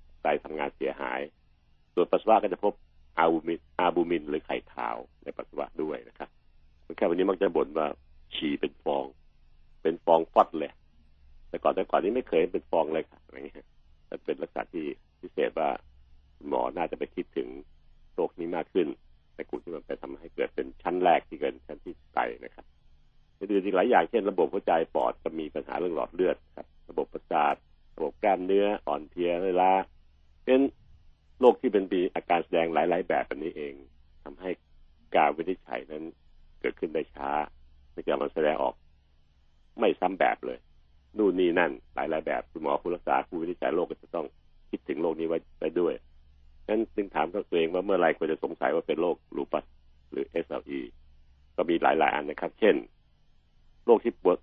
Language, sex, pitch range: Thai, male, 70-80 Hz